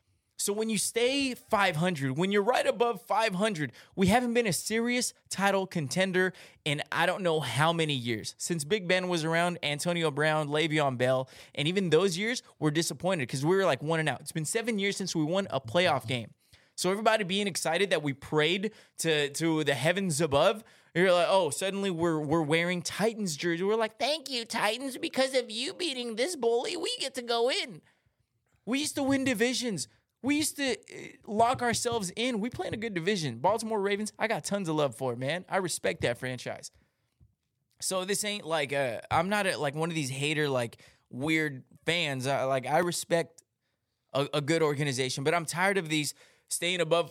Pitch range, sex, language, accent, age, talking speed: 150-205 Hz, male, English, American, 20-39, 195 wpm